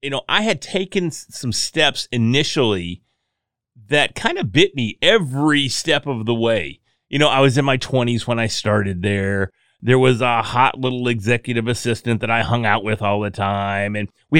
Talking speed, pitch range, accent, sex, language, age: 190 wpm, 115-145 Hz, American, male, English, 30-49